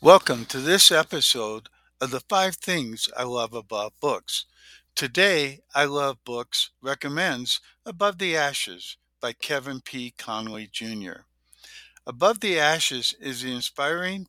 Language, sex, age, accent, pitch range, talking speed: English, male, 60-79, American, 110-150 Hz, 130 wpm